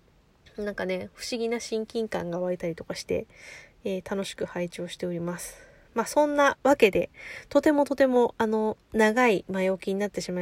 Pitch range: 190-275 Hz